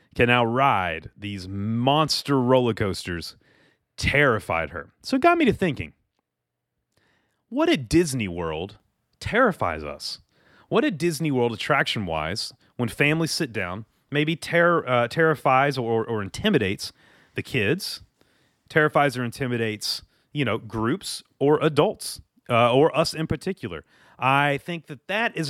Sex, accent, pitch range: male, American, 115-165 Hz